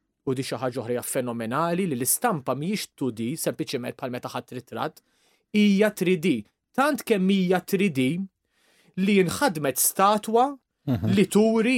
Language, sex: English, male